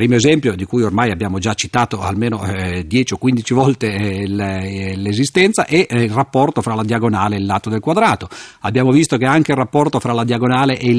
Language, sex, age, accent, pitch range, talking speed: Italian, male, 50-69, native, 110-160 Hz, 210 wpm